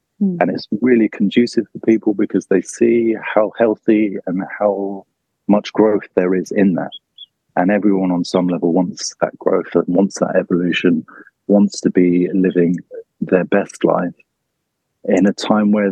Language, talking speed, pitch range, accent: English, 155 wpm, 95-120 Hz, British